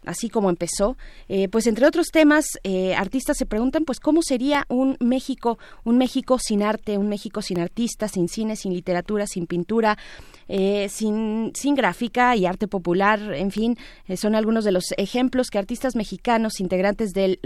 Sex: female